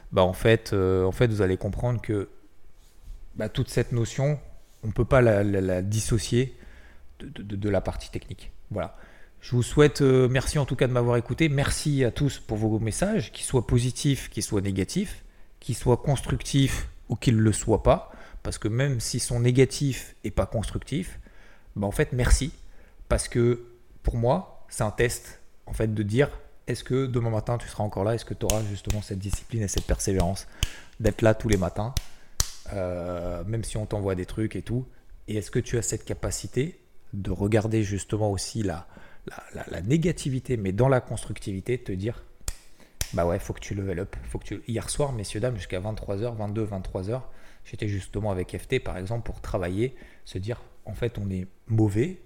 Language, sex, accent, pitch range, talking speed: French, male, French, 95-125 Hz, 200 wpm